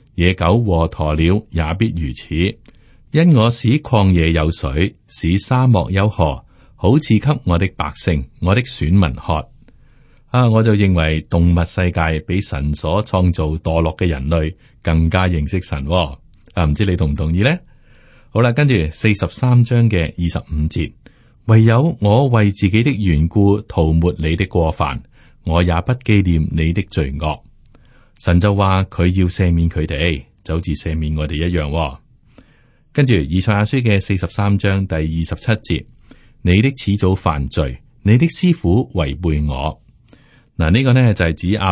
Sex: male